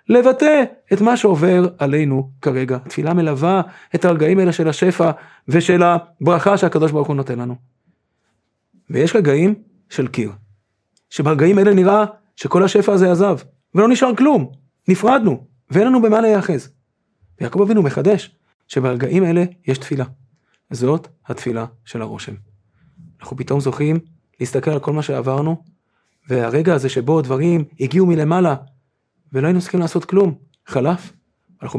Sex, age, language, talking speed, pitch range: male, 30-49, Hebrew, 135 wpm, 135-185 Hz